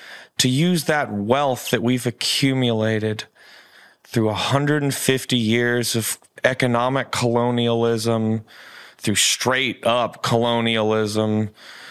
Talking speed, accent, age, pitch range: 80 wpm, American, 30-49, 110-135 Hz